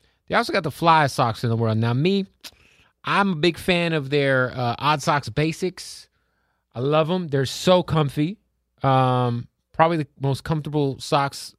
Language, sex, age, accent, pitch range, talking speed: English, male, 30-49, American, 120-155 Hz, 170 wpm